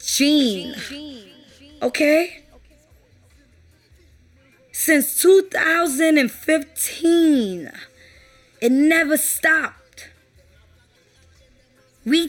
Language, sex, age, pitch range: English, female, 20-39, 185-300 Hz